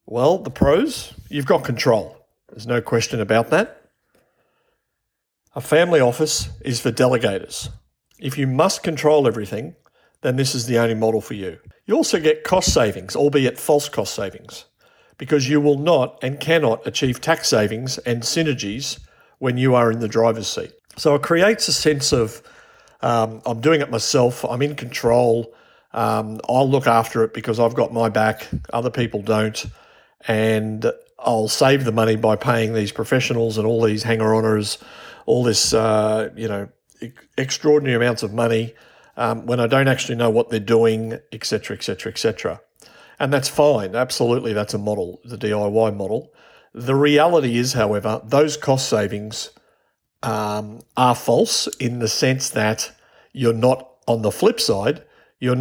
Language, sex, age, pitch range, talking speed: English, male, 50-69, 110-135 Hz, 165 wpm